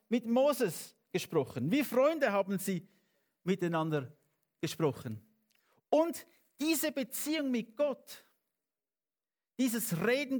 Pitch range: 195-235 Hz